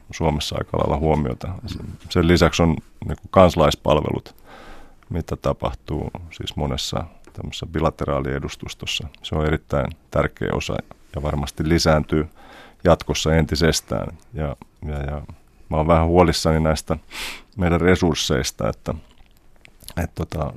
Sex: male